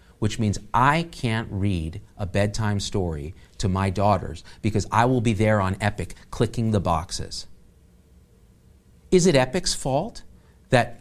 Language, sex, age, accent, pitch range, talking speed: English, male, 40-59, American, 110-165 Hz, 140 wpm